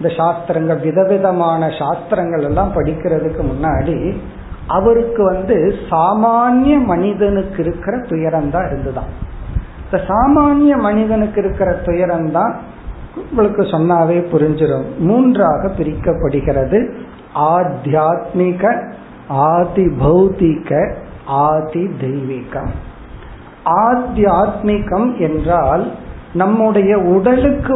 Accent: native